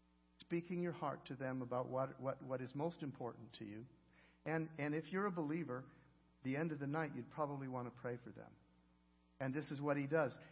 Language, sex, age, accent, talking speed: English, male, 50-69, American, 215 wpm